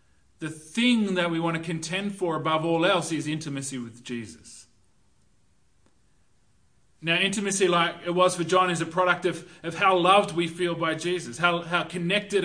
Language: English